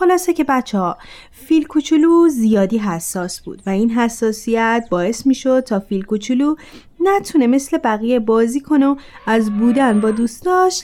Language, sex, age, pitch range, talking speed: Persian, female, 30-49, 200-265 Hz, 150 wpm